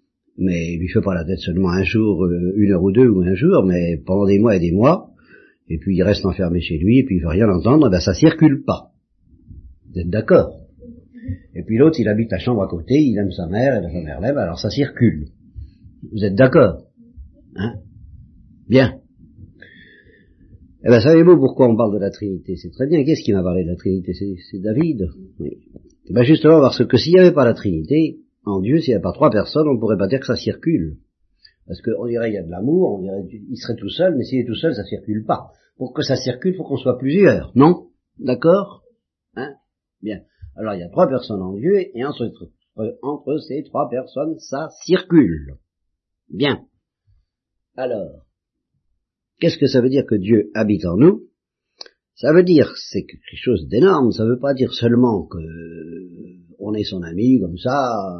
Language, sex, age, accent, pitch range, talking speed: French, male, 50-69, French, 90-130 Hz, 210 wpm